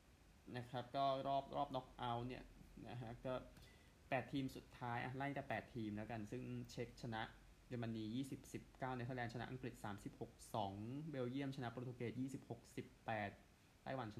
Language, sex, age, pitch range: Thai, male, 20-39, 105-125 Hz